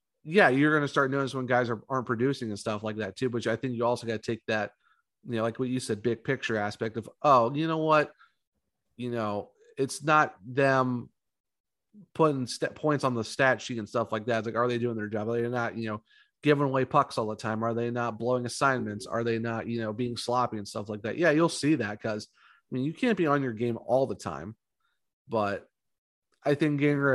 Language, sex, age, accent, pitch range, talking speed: English, male, 30-49, American, 115-145 Hz, 235 wpm